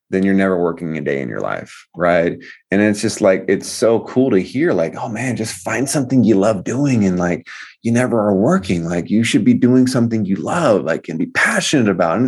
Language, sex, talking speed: English, male, 235 wpm